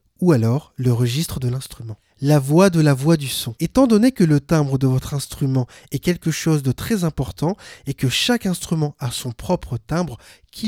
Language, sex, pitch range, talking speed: French, male, 130-180 Hz, 200 wpm